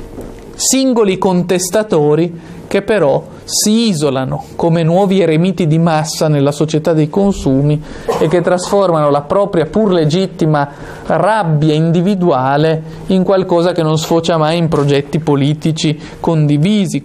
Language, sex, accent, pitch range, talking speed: Italian, male, native, 155-195 Hz, 120 wpm